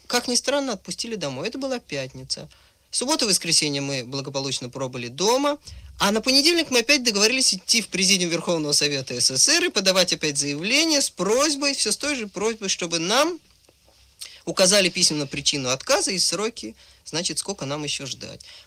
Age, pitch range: 20-39, 140-220 Hz